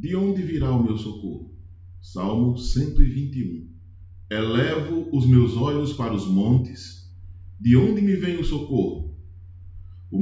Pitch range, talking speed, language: 90-150 Hz, 130 wpm, Portuguese